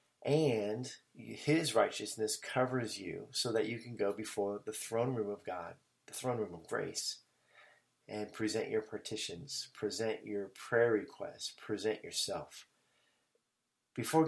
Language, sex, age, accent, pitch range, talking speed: English, male, 30-49, American, 105-135 Hz, 135 wpm